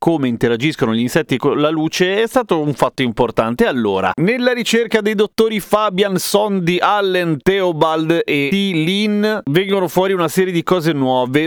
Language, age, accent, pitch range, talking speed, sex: Italian, 30-49, native, 115-160 Hz, 160 wpm, male